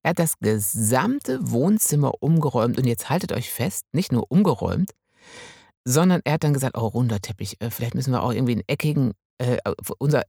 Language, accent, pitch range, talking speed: German, German, 125-170 Hz, 180 wpm